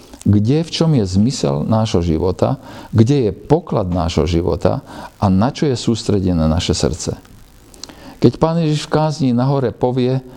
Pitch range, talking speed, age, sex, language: 90-130 Hz, 155 wpm, 50-69, male, Slovak